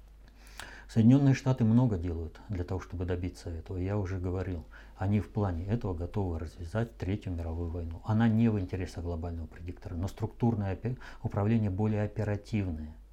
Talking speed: 145 wpm